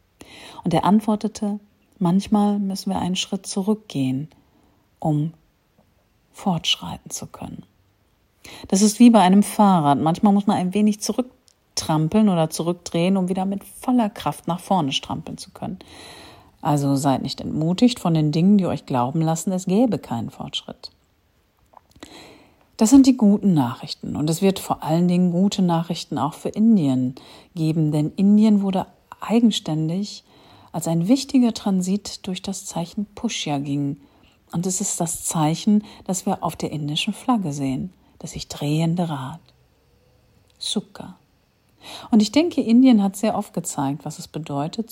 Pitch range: 155-210 Hz